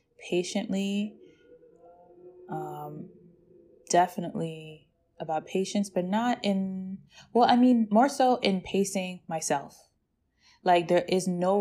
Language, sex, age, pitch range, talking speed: English, female, 20-39, 150-190 Hz, 105 wpm